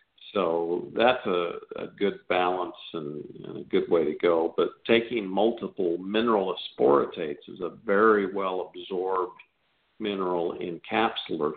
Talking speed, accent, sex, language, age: 130 wpm, American, male, English, 50-69